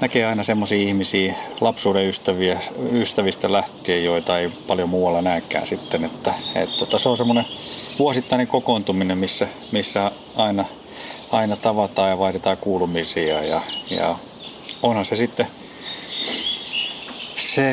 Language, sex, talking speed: Finnish, male, 115 wpm